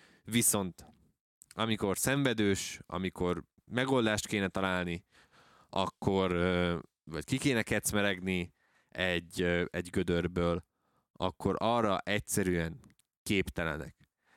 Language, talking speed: Hungarian, 80 wpm